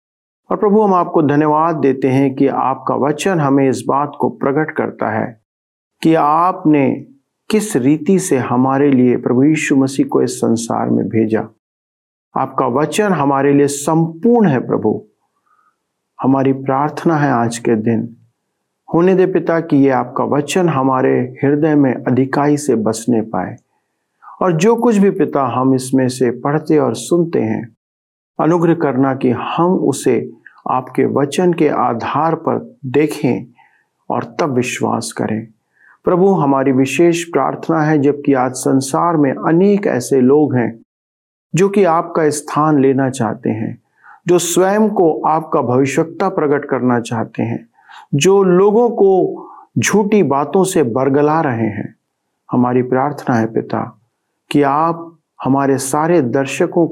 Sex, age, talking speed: male, 50-69, 140 wpm